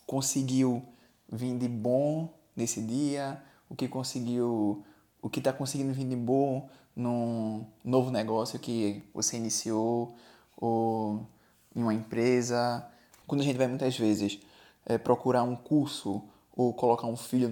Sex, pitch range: male, 115-130 Hz